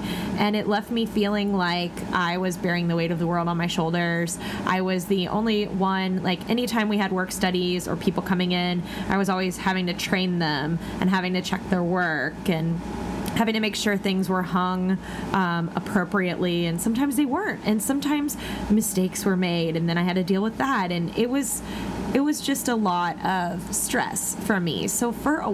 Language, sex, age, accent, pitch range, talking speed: English, female, 20-39, American, 180-210 Hz, 205 wpm